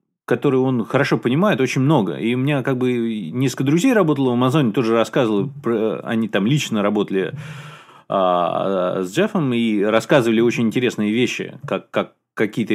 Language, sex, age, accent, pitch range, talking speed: Russian, male, 30-49, native, 110-150 Hz, 160 wpm